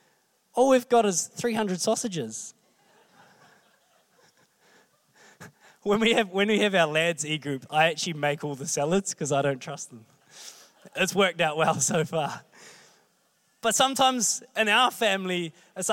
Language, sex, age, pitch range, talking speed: English, male, 20-39, 165-220 Hz, 145 wpm